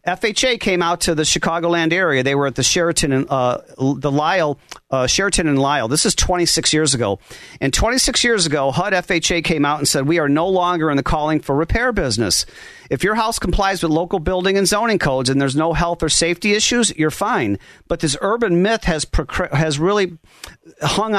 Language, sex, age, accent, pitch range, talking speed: English, male, 40-59, American, 145-185 Hz, 205 wpm